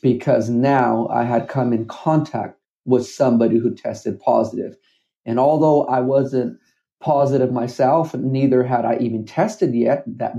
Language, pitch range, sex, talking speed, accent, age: English, 115-135 Hz, male, 145 wpm, American, 40-59